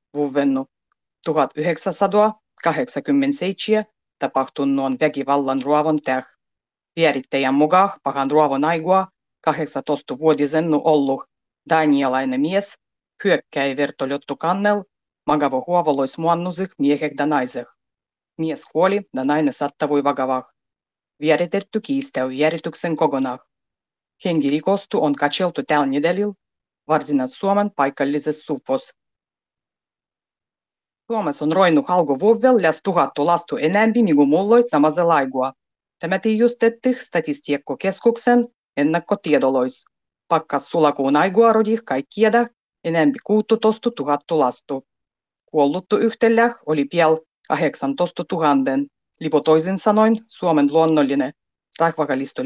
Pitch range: 145-200 Hz